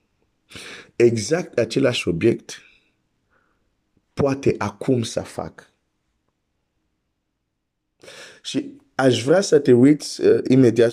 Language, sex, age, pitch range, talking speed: Romanian, male, 50-69, 105-135 Hz, 80 wpm